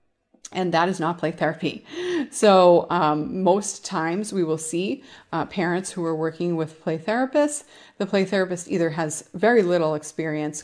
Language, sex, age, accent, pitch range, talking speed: English, female, 30-49, American, 155-195 Hz, 165 wpm